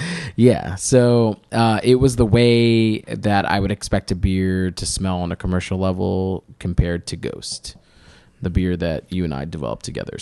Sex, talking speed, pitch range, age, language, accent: male, 175 wpm, 90-115 Hz, 20-39, English, American